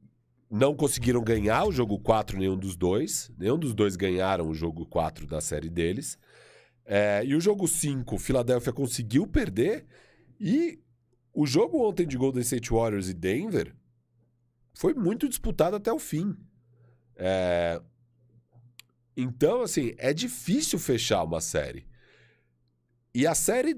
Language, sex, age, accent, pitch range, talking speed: Portuguese, male, 40-59, Brazilian, 110-160 Hz, 130 wpm